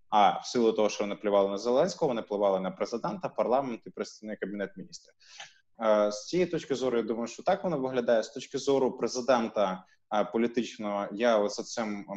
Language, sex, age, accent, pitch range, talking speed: Ukrainian, male, 20-39, native, 110-140 Hz, 165 wpm